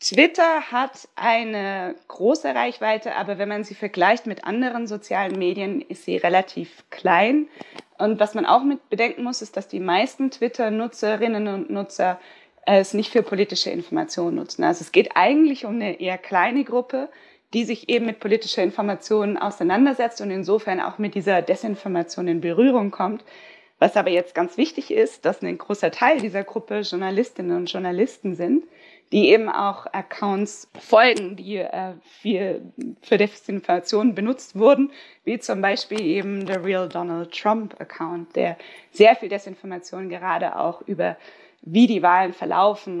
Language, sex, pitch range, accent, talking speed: German, female, 190-245 Hz, German, 155 wpm